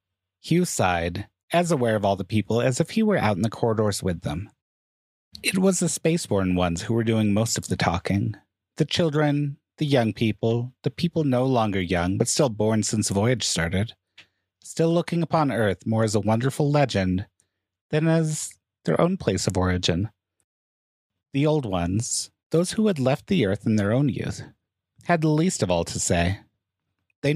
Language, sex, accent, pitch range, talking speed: English, male, American, 95-145 Hz, 185 wpm